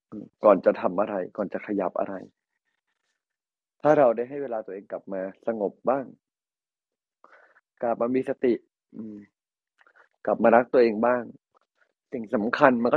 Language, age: Thai, 20-39